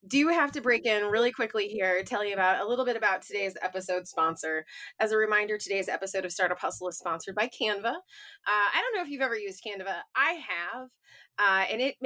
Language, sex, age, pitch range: English, female, 20-39, 190-255 Hz